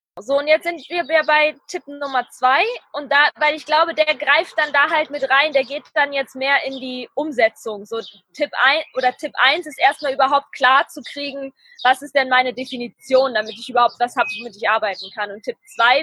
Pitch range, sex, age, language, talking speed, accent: 255-335 Hz, female, 20-39, German, 215 wpm, German